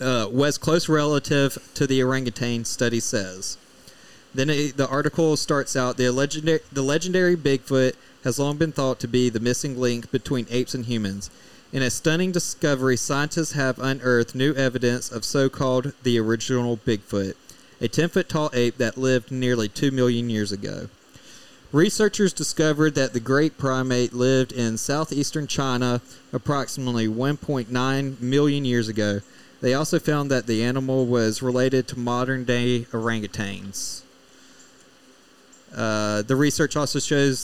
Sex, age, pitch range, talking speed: male, 30-49, 120-140 Hz, 145 wpm